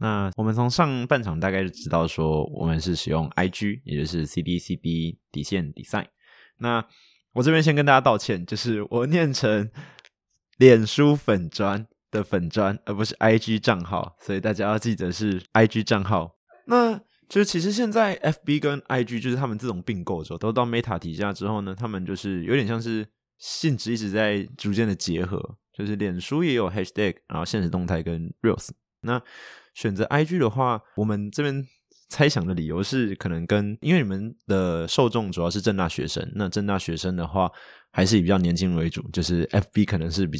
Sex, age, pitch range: male, 20-39, 90-120 Hz